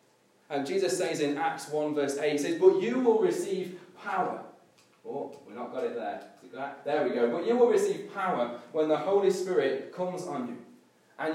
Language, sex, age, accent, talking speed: English, male, 20-39, British, 195 wpm